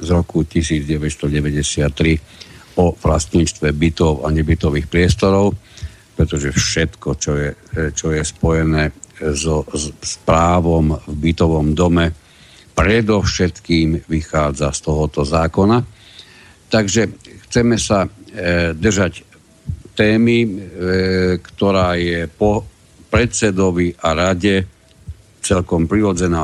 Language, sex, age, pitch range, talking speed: Slovak, male, 60-79, 80-100 Hz, 90 wpm